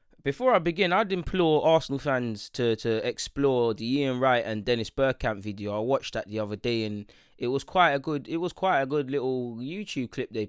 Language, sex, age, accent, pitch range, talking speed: English, male, 20-39, British, 105-130 Hz, 215 wpm